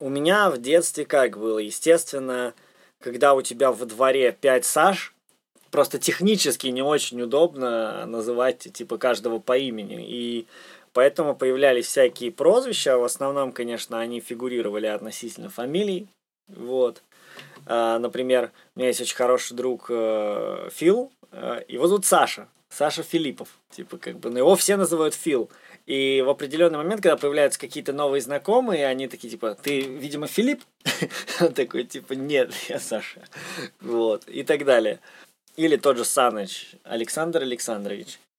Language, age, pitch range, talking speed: Russian, 20-39, 120-160 Hz, 140 wpm